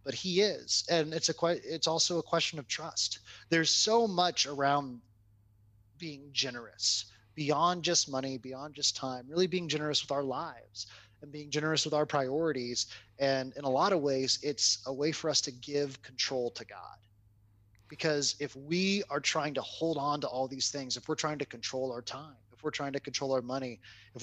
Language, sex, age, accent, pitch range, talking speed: English, male, 30-49, American, 125-165 Hz, 195 wpm